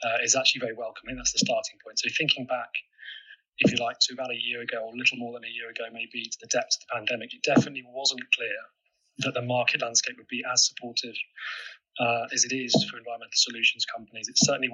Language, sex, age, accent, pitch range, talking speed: English, male, 20-39, British, 120-140 Hz, 230 wpm